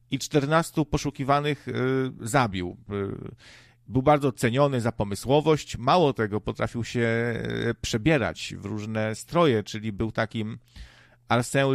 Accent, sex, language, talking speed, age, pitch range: native, male, Polish, 105 wpm, 50-69, 110-135 Hz